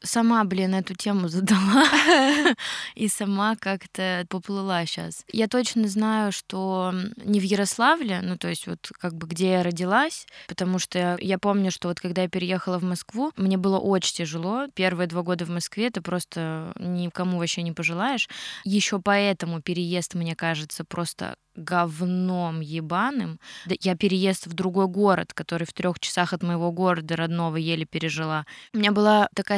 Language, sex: Russian, female